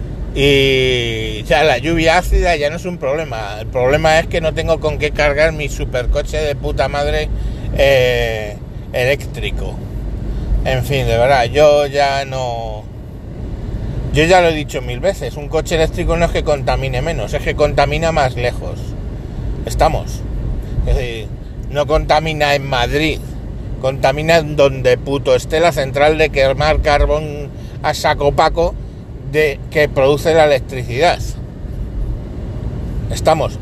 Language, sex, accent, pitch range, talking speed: Spanish, male, Spanish, 125-155 Hz, 145 wpm